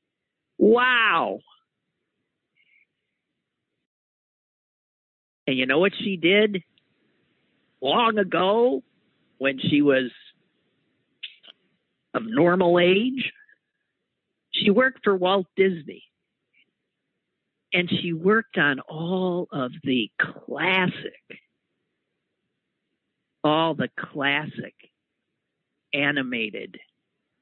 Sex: male